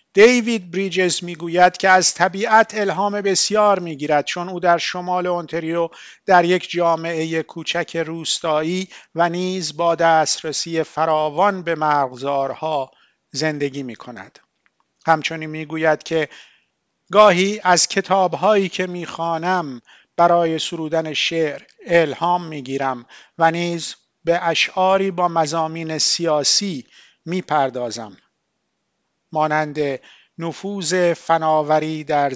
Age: 50-69